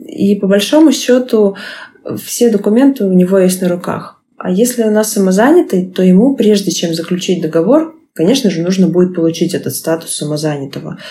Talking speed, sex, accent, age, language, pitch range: 160 wpm, female, native, 20-39, Russian, 165-235 Hz